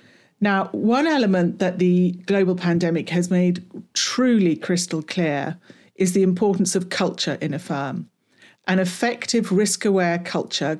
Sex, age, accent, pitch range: female, 40-59, British, 170-200 Hz